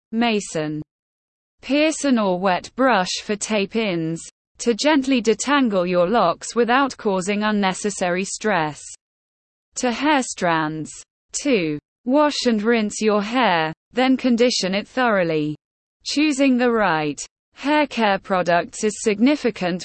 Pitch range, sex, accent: 180-250 Hz, female, British